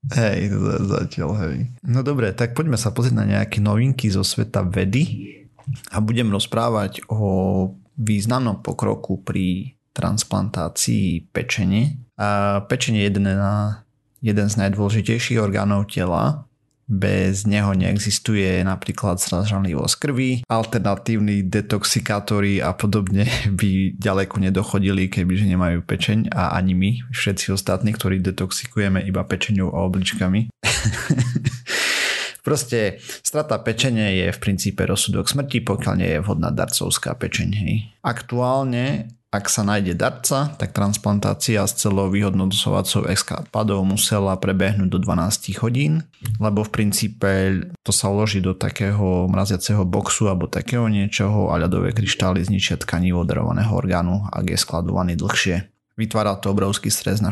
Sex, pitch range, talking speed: male, 95-115 Hz, 125 wpm